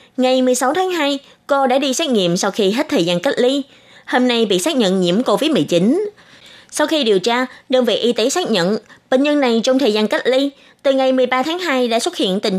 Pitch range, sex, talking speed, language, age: 210-275 Hz, female, 240 wpm, Vietnamese, 20-39